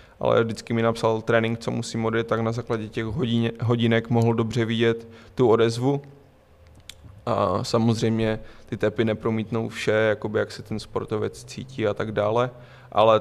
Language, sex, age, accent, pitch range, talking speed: Czech, male, 20-39, native, 115-120 Hz, 160 wpm